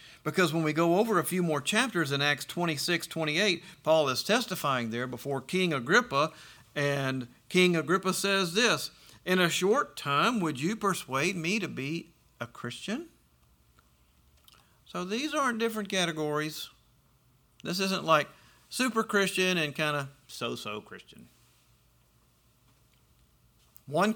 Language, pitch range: English, 130-185 Hz